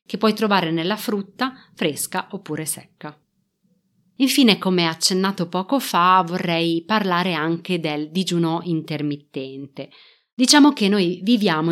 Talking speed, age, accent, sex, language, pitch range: 120 wpm, 30-49, native, female, Italian, 165-200 Hz